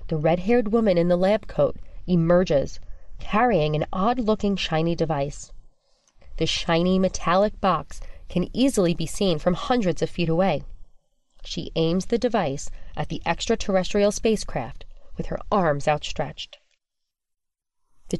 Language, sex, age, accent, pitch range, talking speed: English, female, 30-49, American, 165-220 Hz, 130 wpm